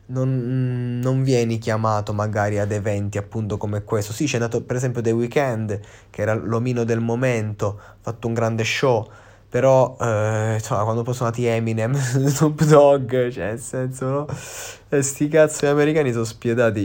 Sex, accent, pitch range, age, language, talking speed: male, native, 105-120 Hz, 20-39, Italian, 165 wpm